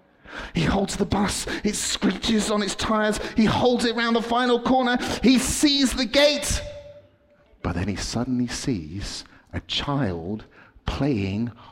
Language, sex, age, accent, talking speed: English, male, 40-59, British, 145 wpm